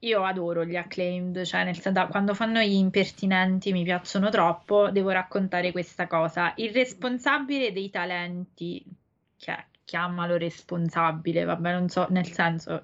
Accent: native